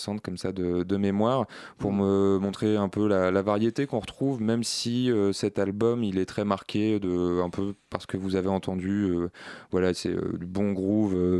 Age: 20-39